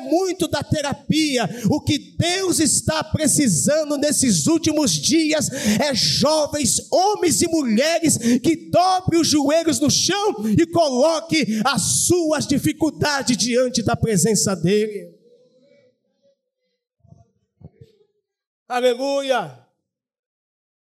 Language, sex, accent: Portuguese, male, Brazilian